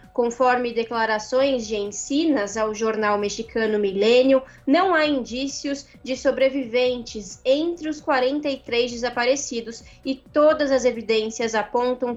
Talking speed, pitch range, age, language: 110 wpm, 225-265 Hz, 20-39, Portuguese